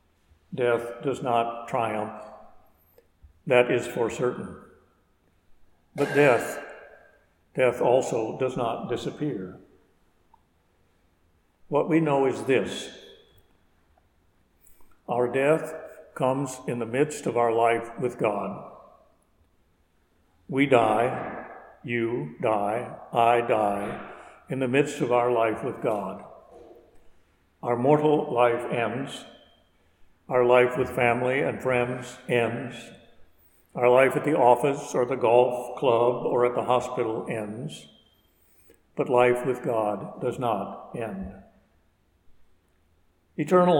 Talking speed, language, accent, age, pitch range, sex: 105 wpm, English, American, 60-79, 95-130 Hz, male